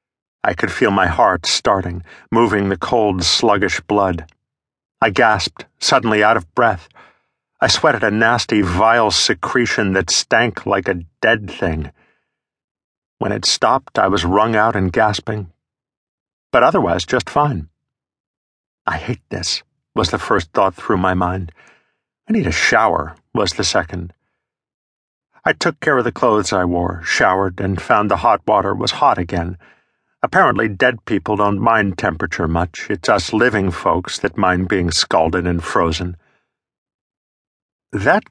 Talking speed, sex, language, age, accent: 145 wpm, male, English, 50-69, American